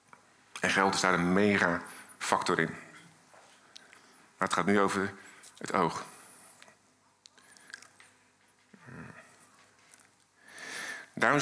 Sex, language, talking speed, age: male, Dutch, 80 wpm, 50-69